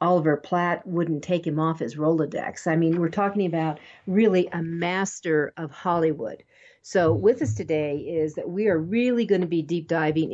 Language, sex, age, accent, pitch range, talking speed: English, female, 50-69, American, 160-200 Hz, 185 wpm